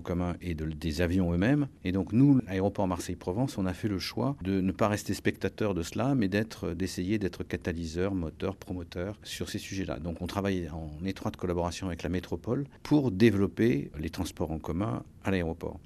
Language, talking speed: French, 190 wpm